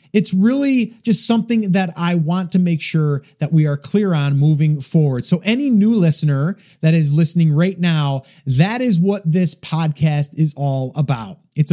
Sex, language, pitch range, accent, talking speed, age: male, English, 155-215 Hz, American, 180 wpm, 30-49